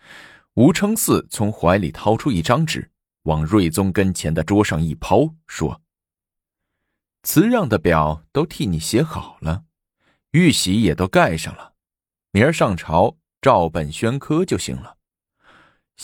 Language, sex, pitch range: Chinese, male, 80-105 Hz